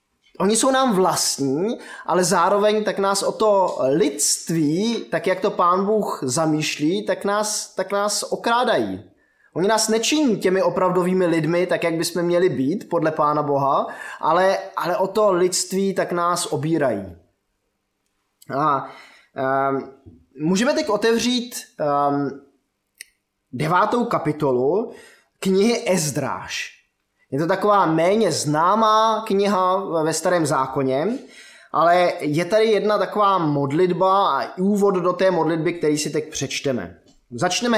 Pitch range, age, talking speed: 150-205 Hz, 20-39, 125 wpm